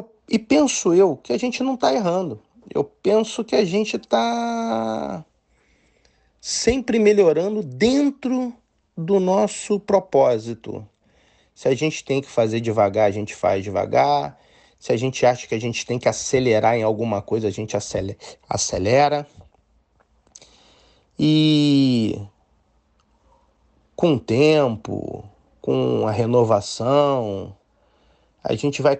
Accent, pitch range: Brazilian, 105-145 Hz